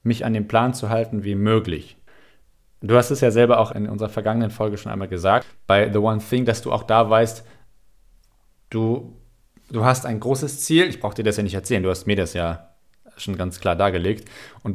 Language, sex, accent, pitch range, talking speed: German, male, German, 105-125 Hz, 215 wpm